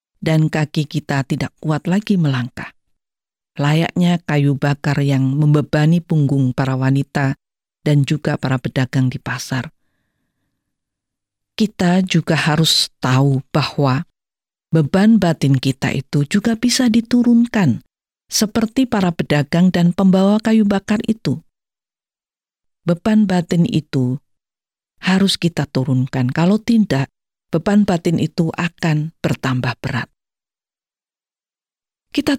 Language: Indonesian